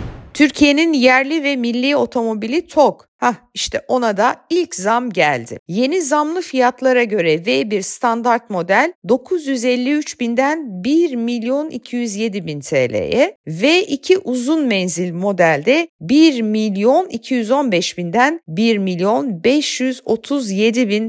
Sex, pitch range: female, 200-280 Hz